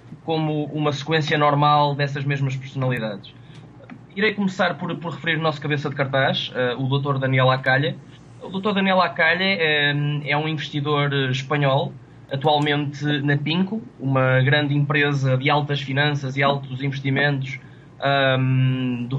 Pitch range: 130-155 Hz